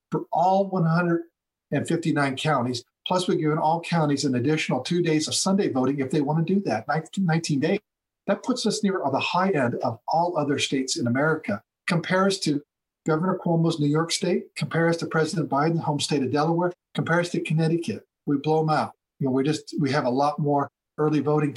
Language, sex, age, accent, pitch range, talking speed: English, male, 50-69, American, 135-175 Hz, 195 wpm